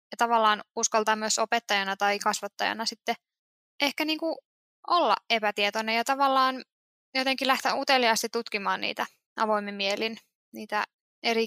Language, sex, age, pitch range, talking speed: Finnish, female, 10-29, 205-235 Hz, 115 wpm